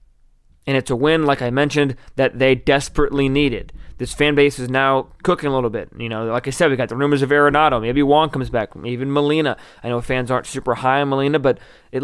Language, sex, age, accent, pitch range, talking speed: English, male, 20-39, American, 120-145 Hz, 240 wpm